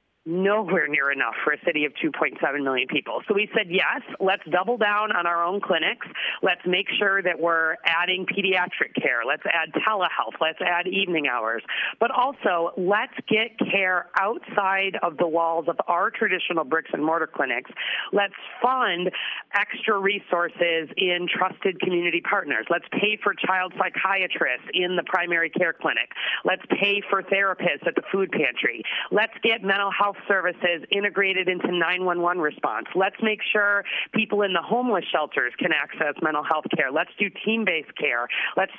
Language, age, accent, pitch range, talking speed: English, 40-59, American, 170-205 Hz, 165 wpm